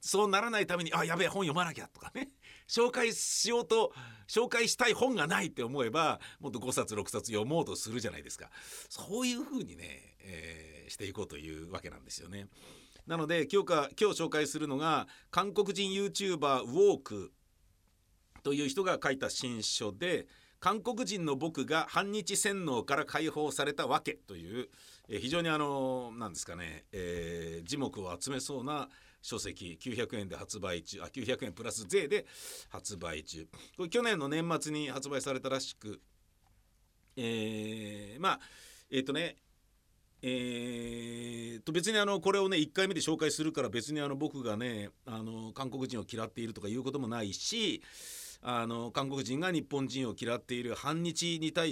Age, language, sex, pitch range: 50-69, Japanese, male, 110-180 Hz